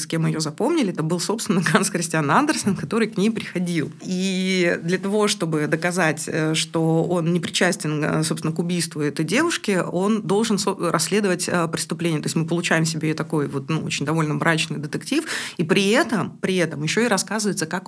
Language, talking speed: Russian, 180 wpm